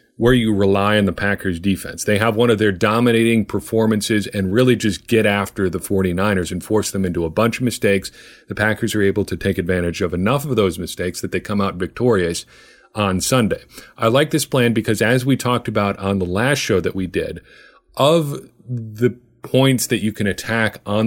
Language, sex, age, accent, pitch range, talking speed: English, male, 40-59, American, 100-120 Hz, 205 wpm